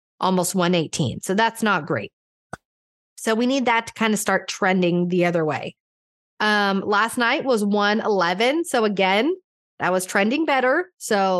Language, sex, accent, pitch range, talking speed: English, female, American, 185-245 Hz, 160 wpm